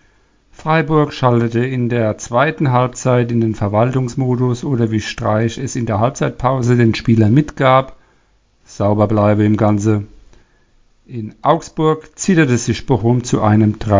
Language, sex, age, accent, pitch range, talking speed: German, male, 50-69, German, 105-135 Hz, 130 wpm